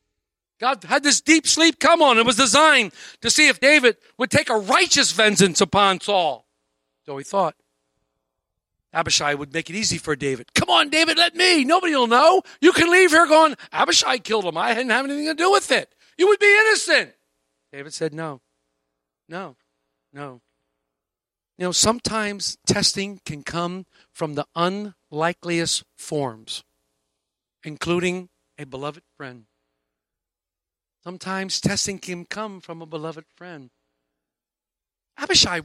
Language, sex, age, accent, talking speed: English, male, 50-69, American, 145 wpm